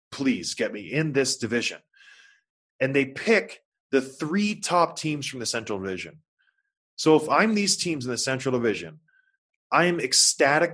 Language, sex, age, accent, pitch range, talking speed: English, male, 20-39, American, 135-200 Hz, 160 wpm